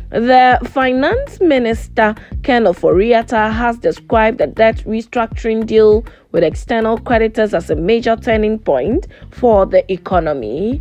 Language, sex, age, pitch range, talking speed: English, female, 20-39, 205-230 Hz, 120 wpm